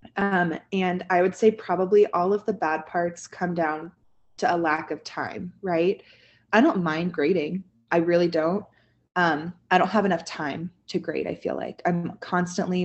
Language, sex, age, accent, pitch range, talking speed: English, female, 20-39, American, 165-200 Hz, 180 wpm